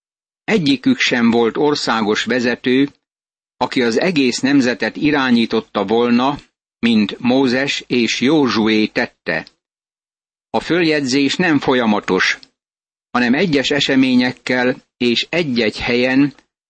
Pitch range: 115-140 Hz